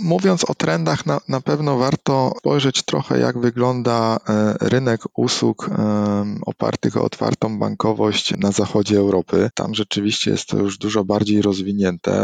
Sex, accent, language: male, native, Polish